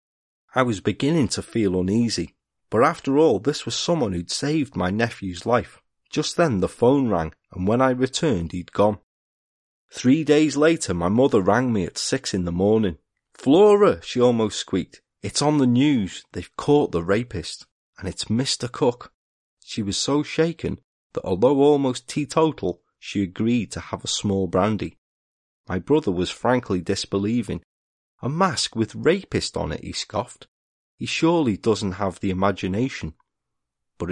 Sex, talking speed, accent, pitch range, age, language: male, 160 wpm, British, 95-135 Hz, 30-49, English